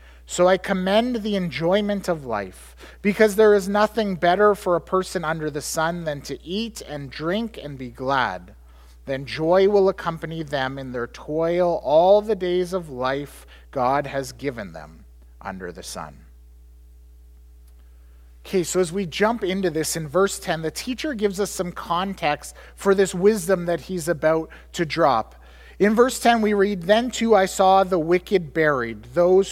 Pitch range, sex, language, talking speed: 150-200 Hz, male, English, 170 wpm